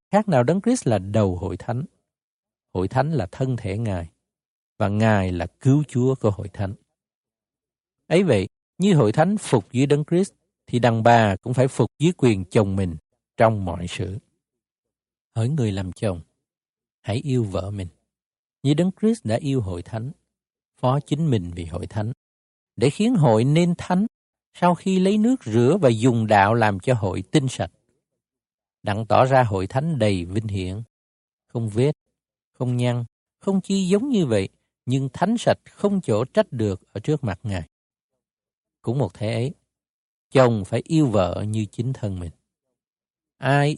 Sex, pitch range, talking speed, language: male, 105-150 Hz, 170 wpm, Vietnamese